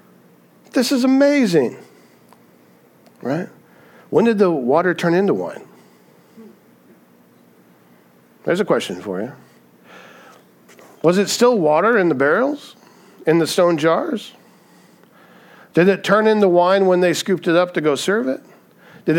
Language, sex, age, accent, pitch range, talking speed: English, male, 50-69, American, 120-180 Hz, 130 wpm